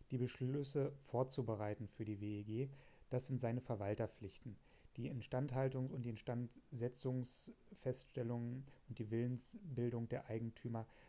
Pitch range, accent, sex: 115-135 Hz, German, male